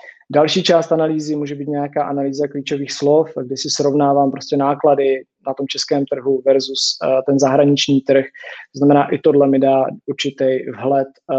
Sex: male